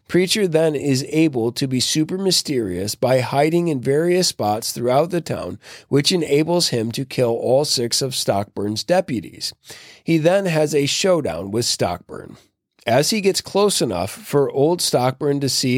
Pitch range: 115-155 Hz